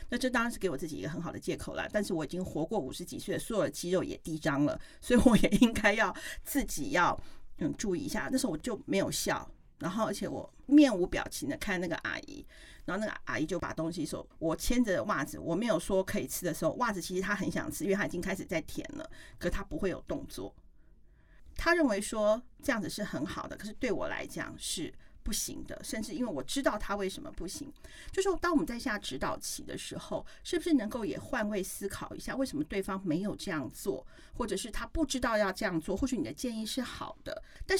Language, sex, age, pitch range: Chinese, female, 40-59, 195-295 Hz